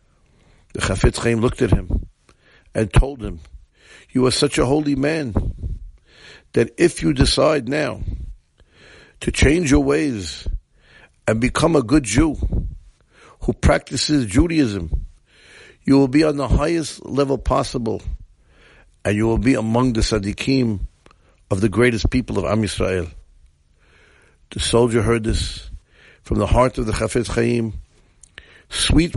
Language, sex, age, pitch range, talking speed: English, male, 60-79, 90-125 Hz, 135 wpm